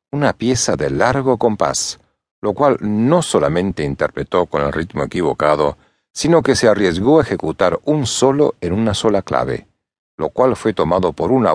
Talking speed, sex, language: 165 wpm, male, Spanish